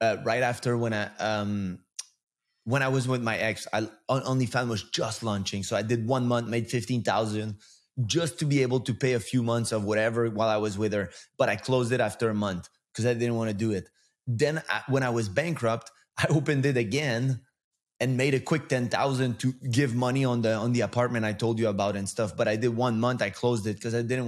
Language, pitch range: English, 105-125 Hz